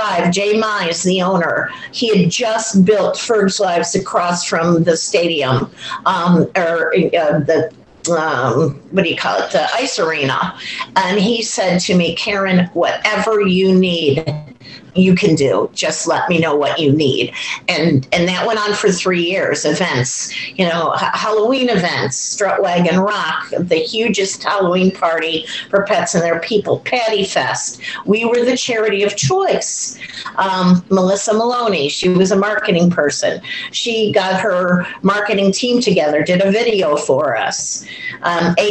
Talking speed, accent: 160 wpm, American